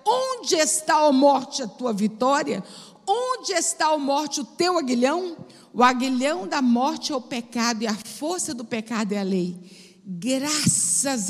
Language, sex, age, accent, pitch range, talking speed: Portuguese, female, 50-69, Brazilian, 195-240 Hz, 160 wpm